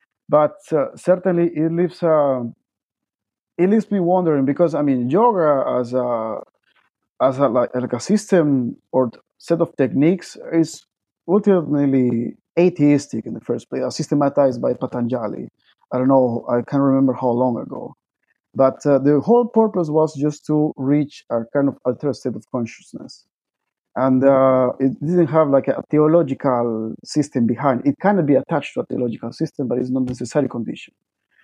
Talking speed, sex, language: 160 wpm, male, English